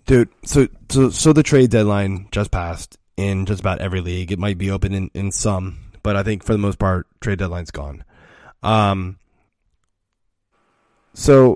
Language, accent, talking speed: English, American, 170 wpm